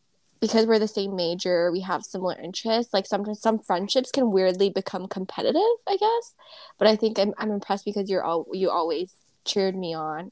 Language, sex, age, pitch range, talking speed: English, female, 10-29, 180-205 Hz, 190 wpm